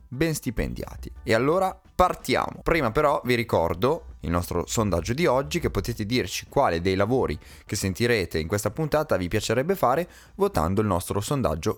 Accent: native